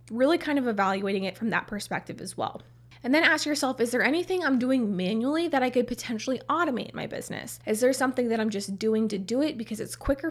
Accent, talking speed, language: American, 240 wpm, English